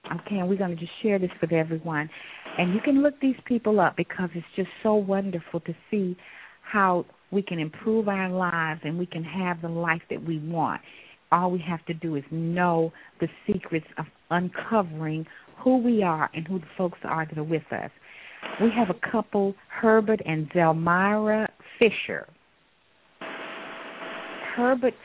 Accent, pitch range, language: American, 170-220 Hz, English